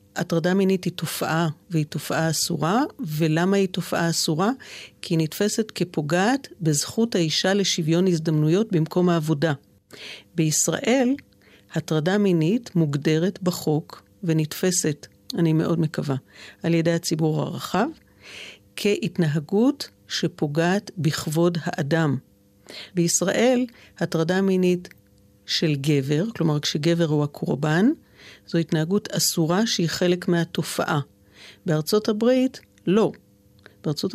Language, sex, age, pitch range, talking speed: Hebrew, female, 50-69, 155-195 Hz, 100 wpm